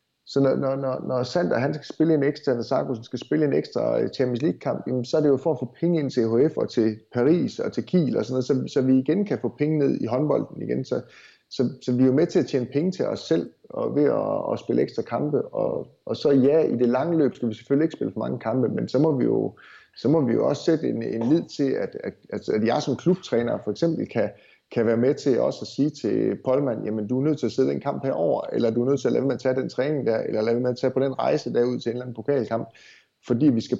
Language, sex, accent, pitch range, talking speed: Danish, male, native, 120-145 Hz, 285 wpm